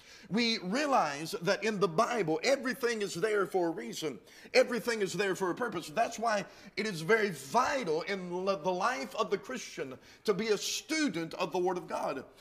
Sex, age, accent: male, 40-59, American